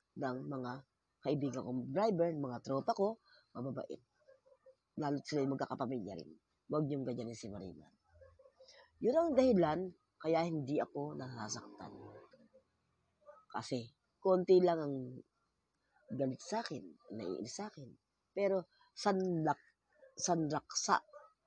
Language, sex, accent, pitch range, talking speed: English, female, Filipino, 135-195 Hz, 105 wpm